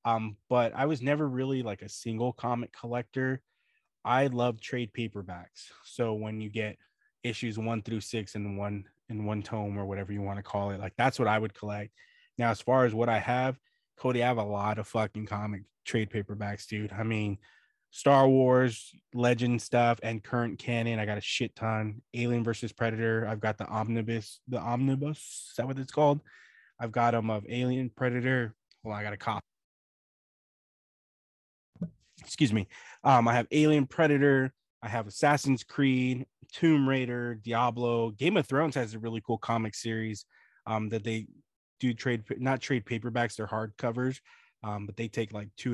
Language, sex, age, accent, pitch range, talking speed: English, male, 20-39, American, 110-125 Hz, 180 wpm